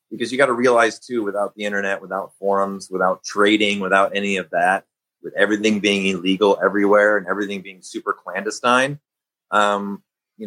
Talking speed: 165 wpm